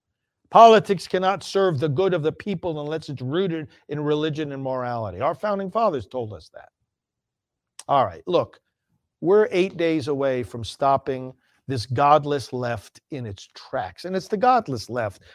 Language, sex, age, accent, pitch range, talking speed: English, male, 50-69, American, 125-180 Hz, 160 wpm